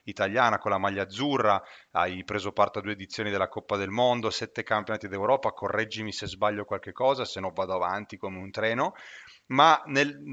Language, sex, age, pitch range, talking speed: Italian, male, 30-49, 100-125 Hz, 185 wpm